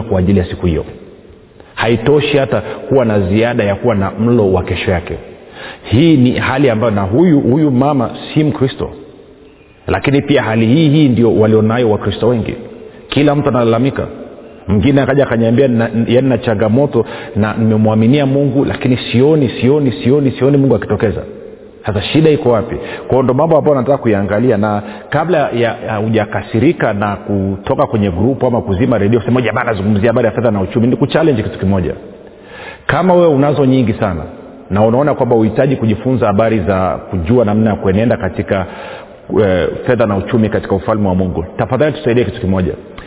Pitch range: 105-135 Hz